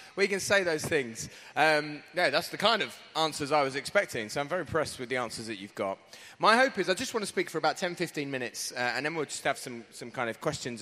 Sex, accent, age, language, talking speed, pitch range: male, British, 20-39, English, 265 wpm, 130-165 Hz